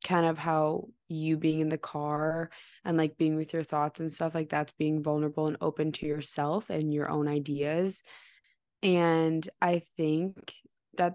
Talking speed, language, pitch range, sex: 170 wpm, English, 155-175 Hz, female